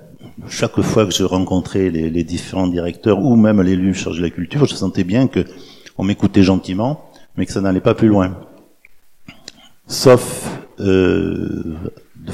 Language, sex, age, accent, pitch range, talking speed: French, male, 50-69, French, 90-115 Hz, 160 wpm